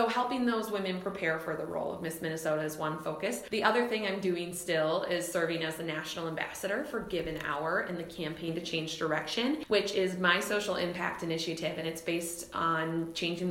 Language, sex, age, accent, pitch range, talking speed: English, female, 20-39, American, 165-215 Hz, 205 wpm